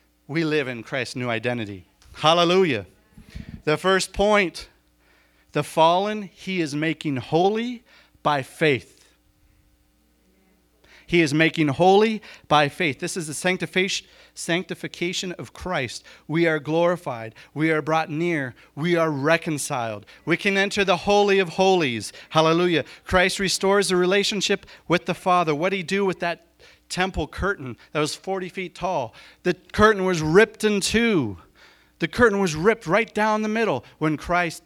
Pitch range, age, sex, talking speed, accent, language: 145-185 Hz, 40-59, male, 145 wpm, American, English